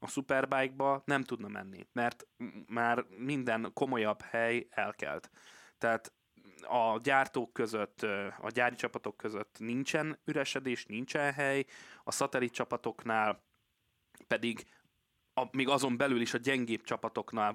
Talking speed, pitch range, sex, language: 120 wpm, 110-125 Hz, male, Hungarian